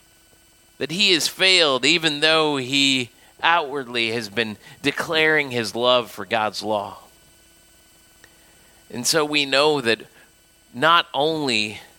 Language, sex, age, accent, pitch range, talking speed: English, male, 30-49, American, 130-185 Hz, 115 wpm